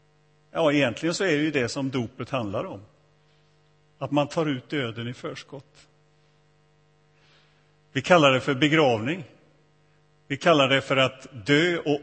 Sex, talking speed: male, 150 wpm